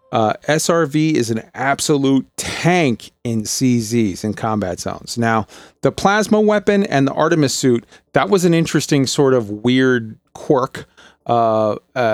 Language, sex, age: English, male, 30-49